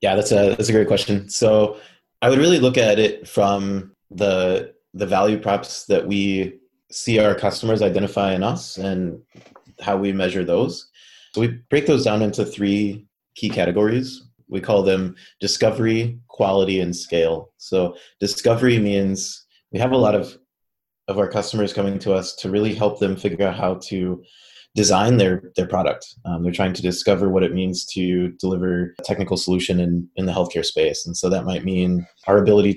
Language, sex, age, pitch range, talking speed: English, male, 20-39, 90-105 Hz, 180 wpm